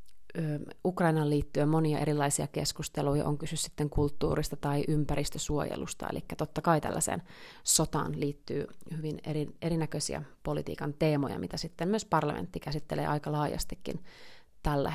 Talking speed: 115 wpm